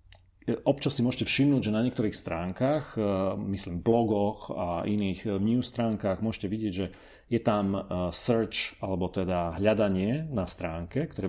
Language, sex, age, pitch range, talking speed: Slovak, male, 40-59, 95-120 Hz, 140 wpm